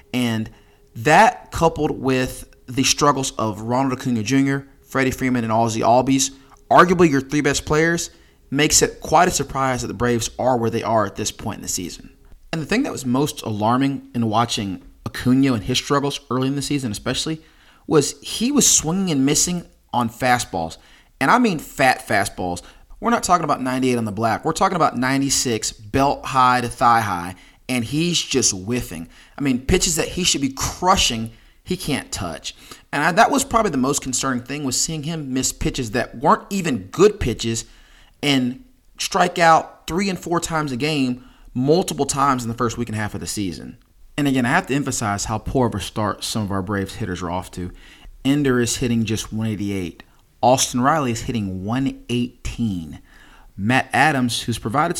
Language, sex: English, male